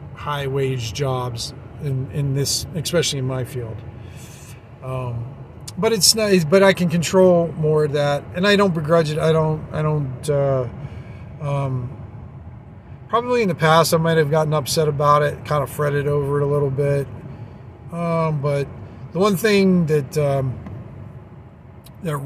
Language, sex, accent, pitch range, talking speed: English, male, American, 125-155 Hz, 155 wpm